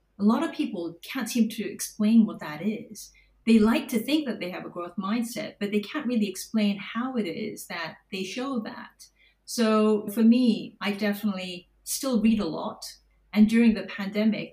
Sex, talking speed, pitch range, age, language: female, 190 wpm, 190-230 Hz, 40-59, English